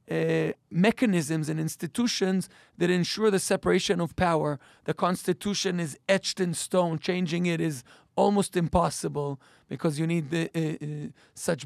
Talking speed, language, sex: 140 wpm, English, male